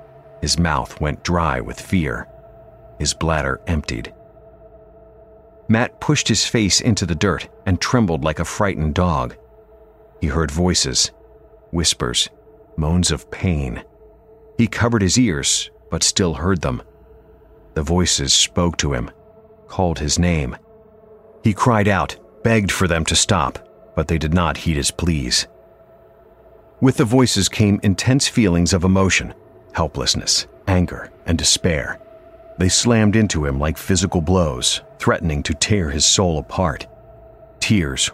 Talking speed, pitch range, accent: 135 wpm, 80-120 Hz, American